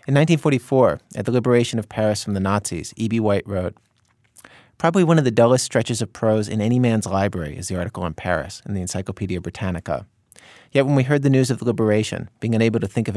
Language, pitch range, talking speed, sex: English, 100-120 Hz, 220 wpm, male